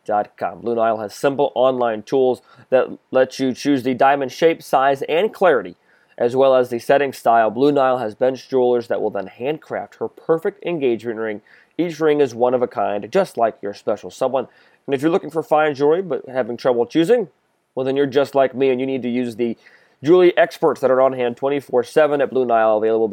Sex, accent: male, American